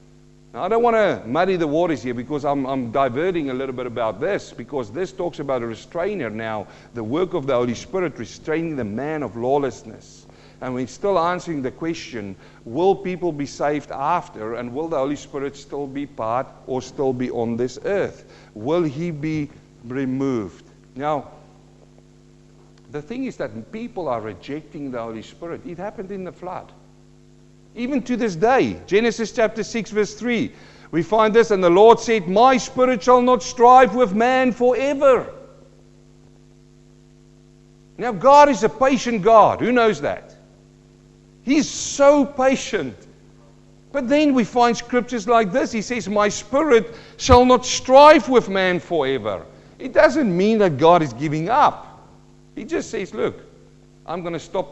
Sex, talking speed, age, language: male, 165 wpm, 50-69, English